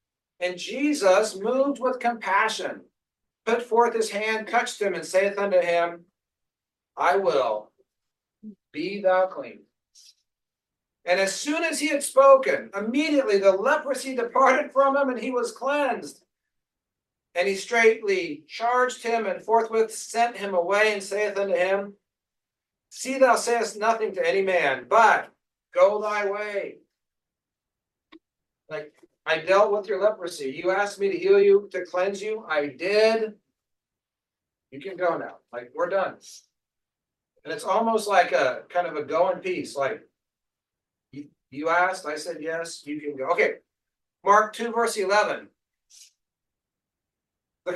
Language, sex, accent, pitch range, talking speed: English, male, American, 180-240 Hz, 140 wpm